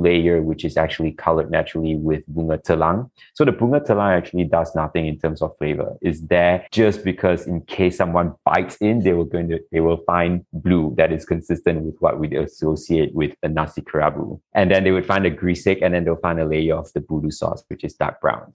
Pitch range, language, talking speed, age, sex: 80-95 Hz, English, 225 wpm, 20-39, male